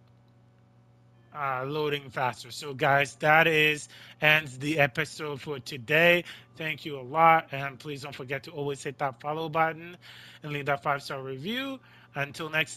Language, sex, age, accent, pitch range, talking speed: English, male, 20-39, American, 130-165 Hz, 155 wpm